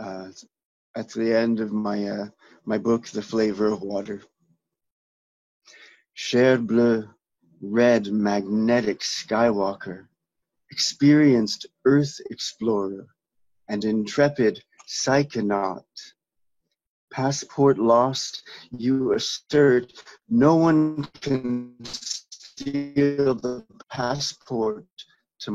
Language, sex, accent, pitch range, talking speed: English, male, American, 105-130 Hz, 80 wpm